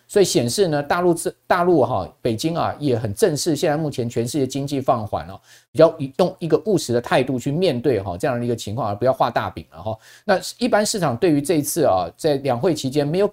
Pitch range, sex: 115-155 Hz, male